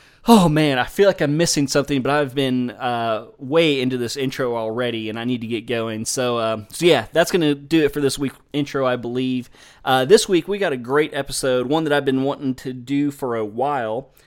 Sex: male